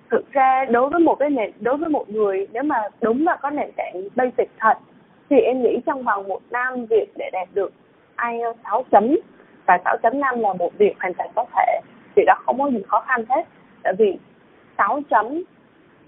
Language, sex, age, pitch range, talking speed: Vietnamese, female, 20-39, 205-300 Hz, 190 wpm